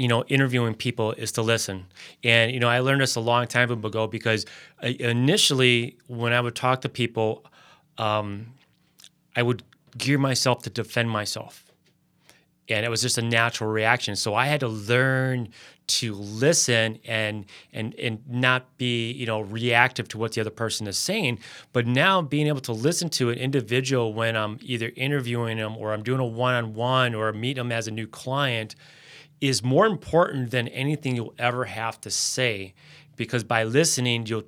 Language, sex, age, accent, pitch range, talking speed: English, male, 30-49, American, 110-130 Hz, 180 wpm